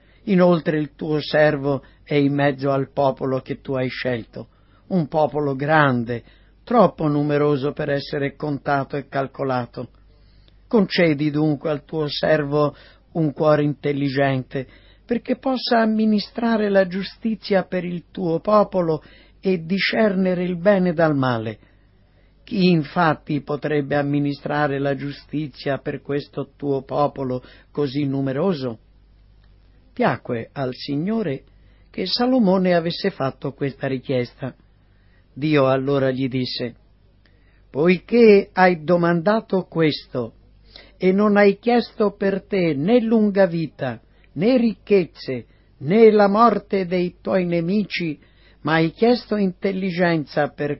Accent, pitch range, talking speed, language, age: native, 125-185 Hz, 115 wpm, Italian, 50-69